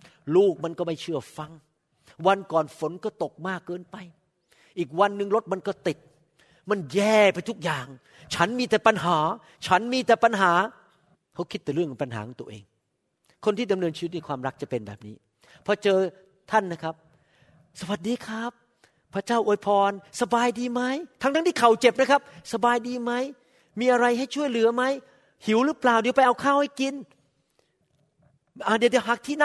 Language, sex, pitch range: Thai, male, 165-240 Hz